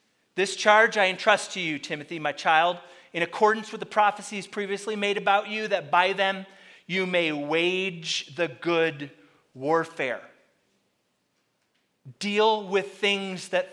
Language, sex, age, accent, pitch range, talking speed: English, male, 30-49, American, 140-195 Hz, 135 wpm